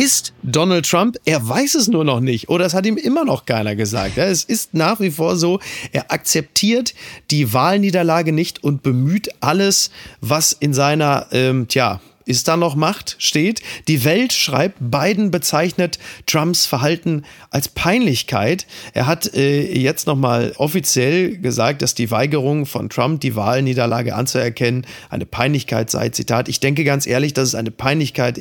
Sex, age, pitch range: male, 40-59, 130-170 Hz